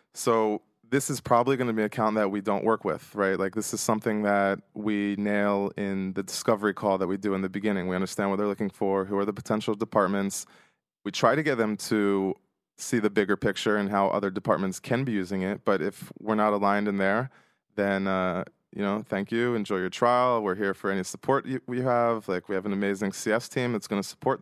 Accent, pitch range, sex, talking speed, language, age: American, 100-115 Hz, male, 235 wpm, Hebrew, 20-39